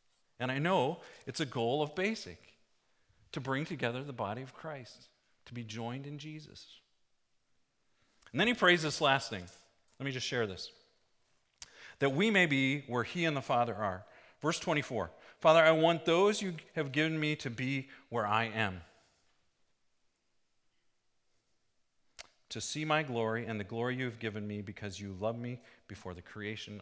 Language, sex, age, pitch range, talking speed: English, male, 40-59, 115-160 Hz, 170 wpm